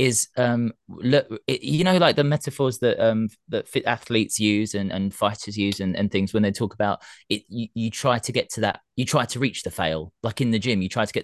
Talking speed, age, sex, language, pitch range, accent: 255 wpm, 20-39, male, English, 100-130 Hz, British